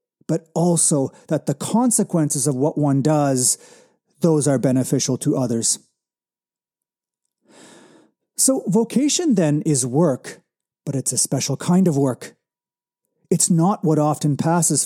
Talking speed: 125 wpm